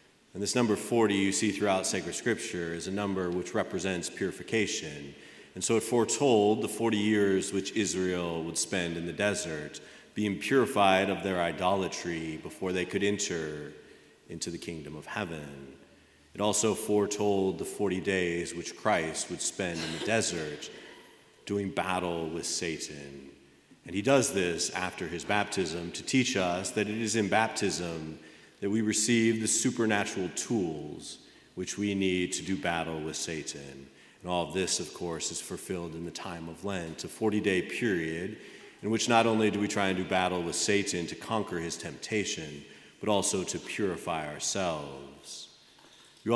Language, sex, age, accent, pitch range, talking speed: English, male, 30-49, American, 85-105 Hz, 165 wpm